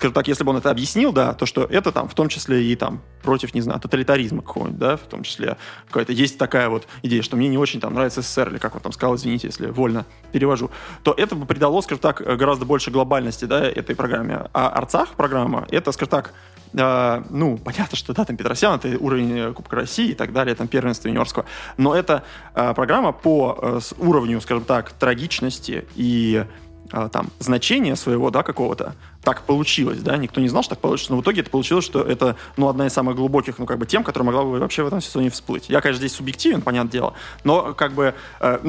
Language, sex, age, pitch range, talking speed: Russian, male, 20-39, 120-140 Hz, 215 wpm